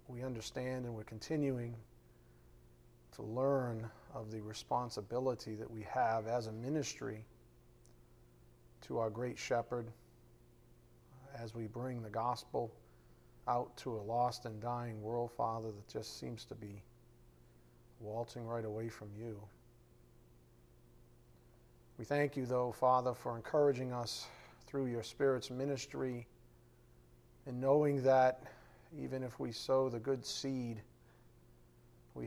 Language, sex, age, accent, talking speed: English, male, 40-59, American, 125 wpm